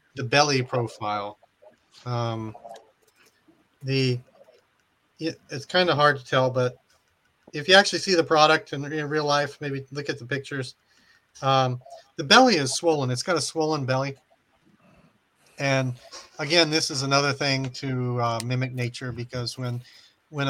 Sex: male